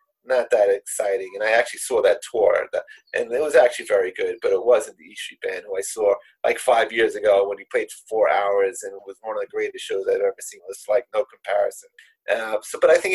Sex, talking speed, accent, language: male, 255 wpm, American, English